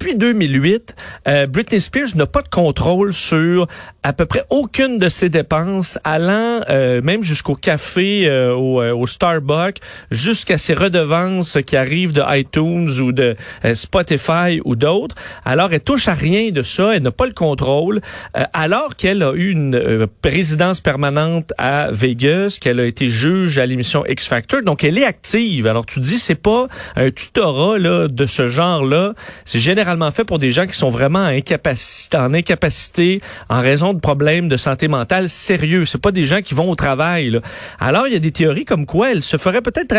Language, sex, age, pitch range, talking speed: French, male, 40-59, 140-195 Hz, 190 wpm